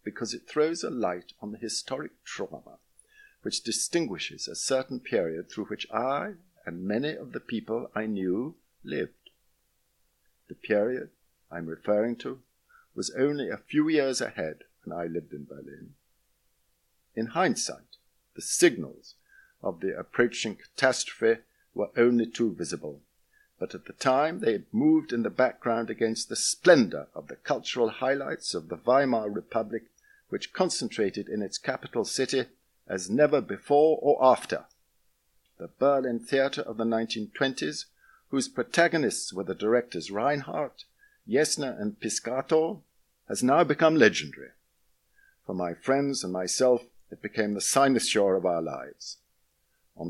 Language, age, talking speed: English, 50-69, 140 wpm